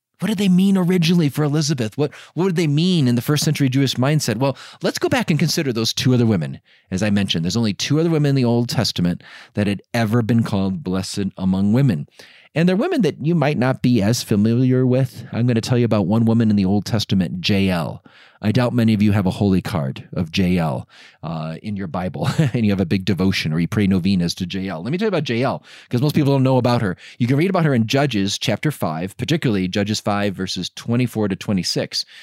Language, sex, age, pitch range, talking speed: English, male, 30-49, 100-130 Hz, 235 wpm